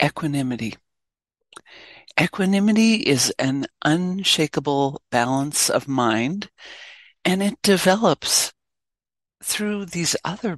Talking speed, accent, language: 80 wpm, American, English